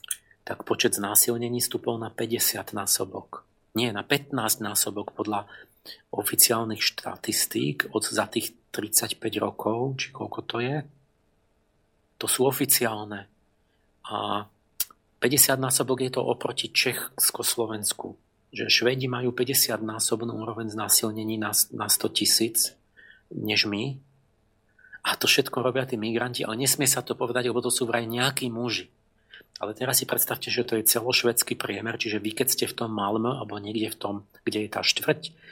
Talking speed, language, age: 145 wpm, Slovak, 40-59